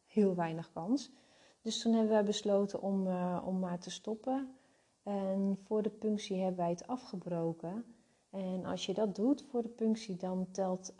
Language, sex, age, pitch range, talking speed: Dutch, female, 30-49, 175-215 Hz, 175 wpm